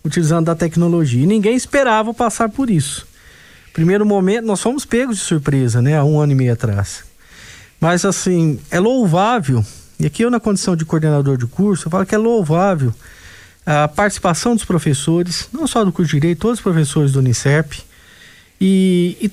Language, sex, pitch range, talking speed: Portuguese, male, 140-225 Hz, 180 wpm